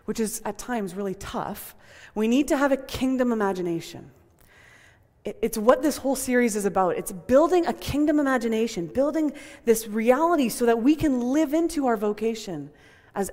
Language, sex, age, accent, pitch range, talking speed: English, female, 20-39, American, 190-255 Hz, 165 wpm